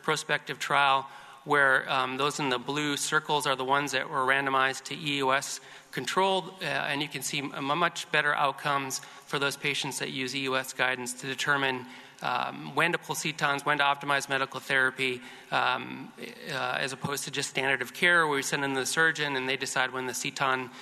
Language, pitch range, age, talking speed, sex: English, 135-160 Hz, 30-49, 190 wpm, male